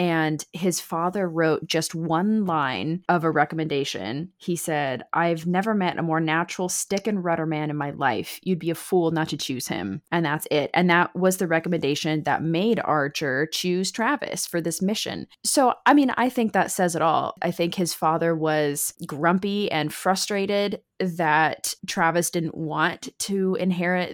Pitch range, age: 160-200 Hz, 20-39